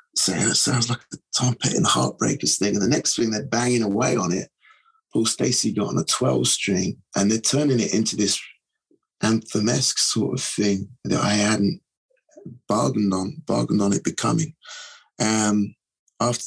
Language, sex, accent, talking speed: English, male, British, 175 wpm